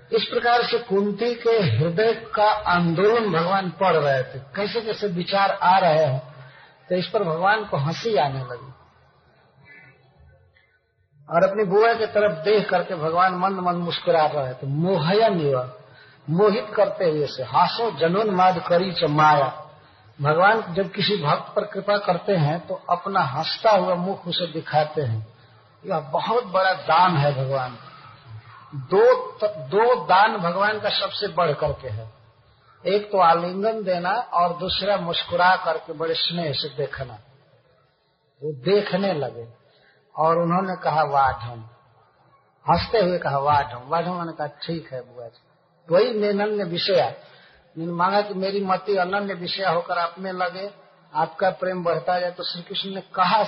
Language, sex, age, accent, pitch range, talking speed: Hindi, male, 50-69, native, 145-195 Hz, 150 wpm